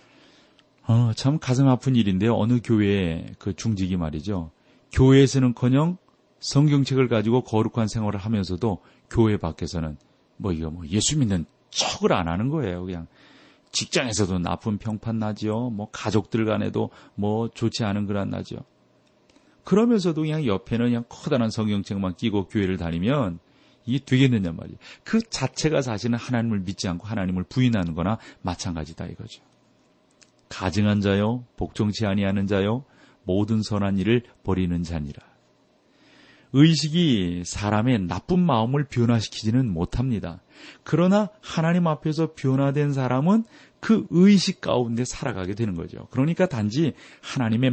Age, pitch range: 40-59, 100-130 Hz